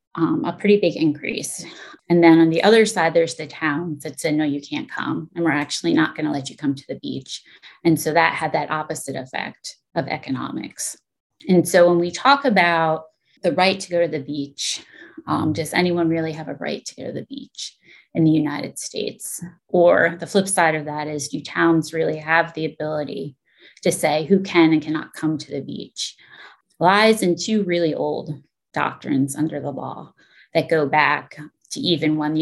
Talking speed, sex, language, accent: 200 wpm, female, English, American